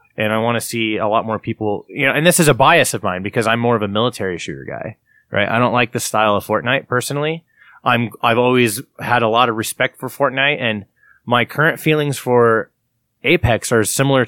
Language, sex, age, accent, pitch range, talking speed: English, male, 20-39, American, 110-130 Hz, 225 wpm